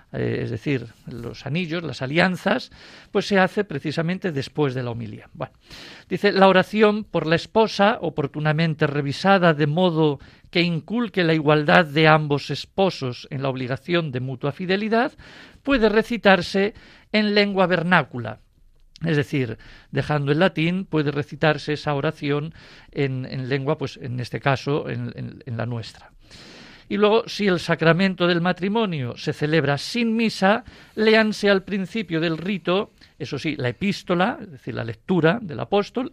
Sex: male